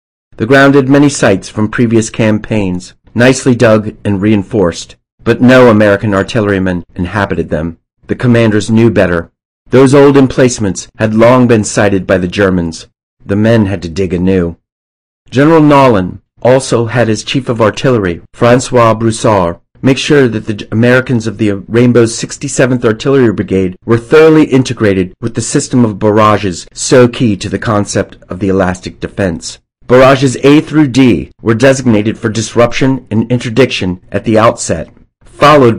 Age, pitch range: 40-59, 100-125 Hz